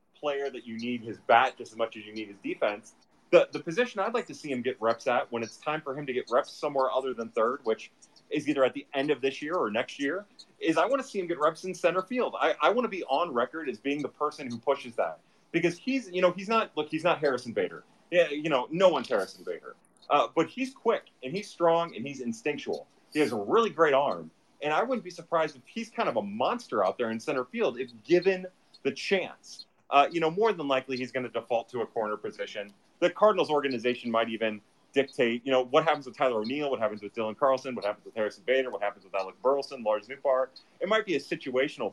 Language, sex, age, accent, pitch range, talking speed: English, male, 30-49, American, 120-175 Hz, 255 wpm